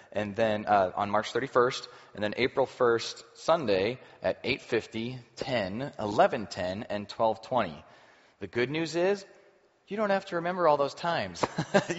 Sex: male